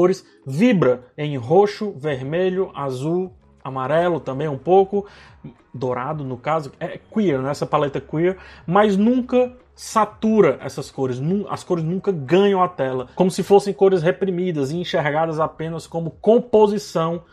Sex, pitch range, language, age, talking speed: male, 140-175 Hz, Portuguese, 20-39, 135 wpm